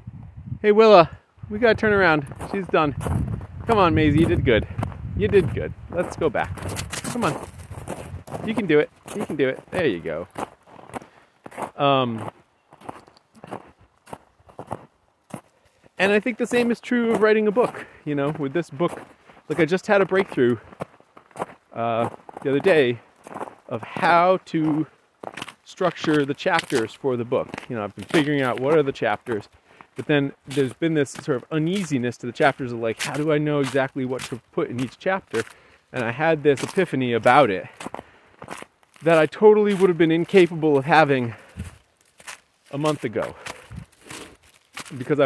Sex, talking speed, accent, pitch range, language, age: male, 165 wpm, American, 130-185 Hz, English, 40-59